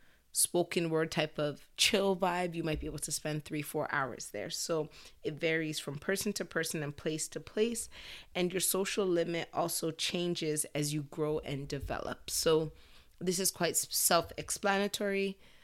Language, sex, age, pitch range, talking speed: English, female, 20-39, 150-175 Hz, 165 wpm